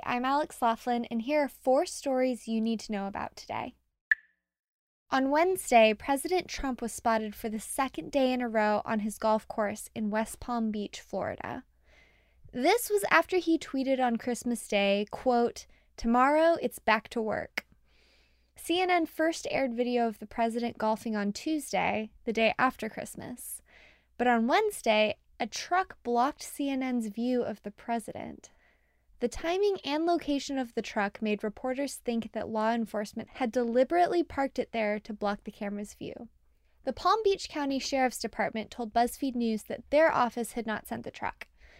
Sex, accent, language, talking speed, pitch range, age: female, American, English, 165 wpm, 220-275 Hz, 20-39